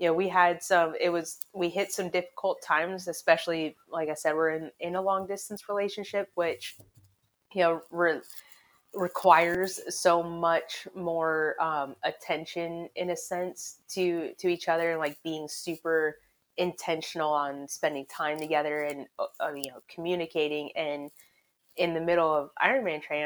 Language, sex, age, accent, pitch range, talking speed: English, female, 30-49, American, 155-180 Hz, 150 wpm